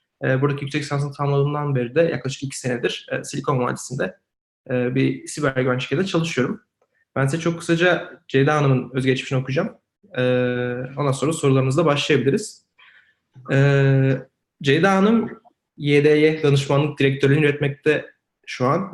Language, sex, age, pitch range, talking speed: Turkish, male, 30-49, 135-170 Hz, 125 wpm